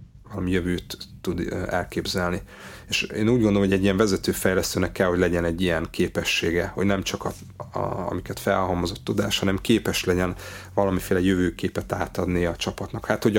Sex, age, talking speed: male, 30-49, 165 wpm